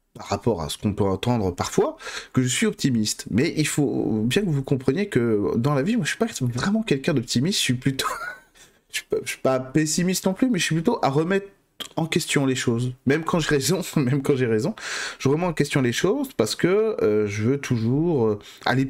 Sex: male